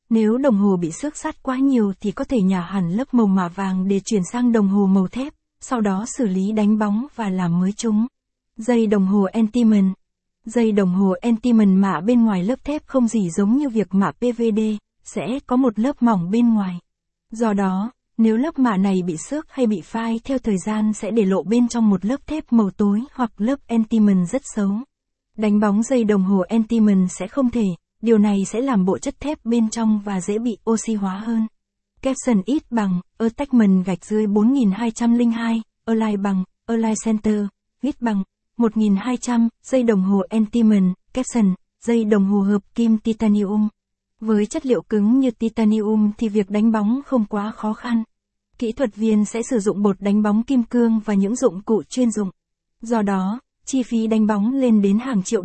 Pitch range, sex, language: 200-235 Hz, female, Vietnamese